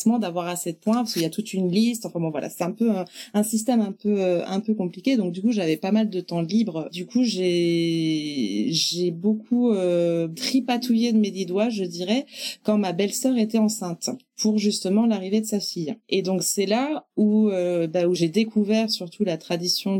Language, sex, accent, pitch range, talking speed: French, female, French, 175-220 Hz, 215 wpm